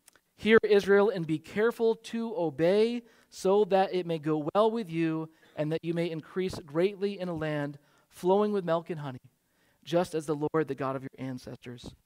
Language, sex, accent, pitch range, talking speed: English, male, American, 150-190 Hz, 190 wpm